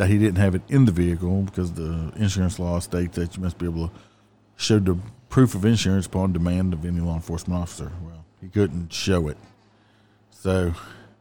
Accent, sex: American, male